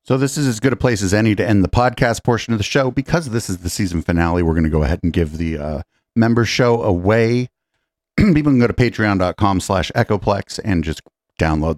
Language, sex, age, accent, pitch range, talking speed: English, male, 40-59, American, 85-115 Hz, 230 wpm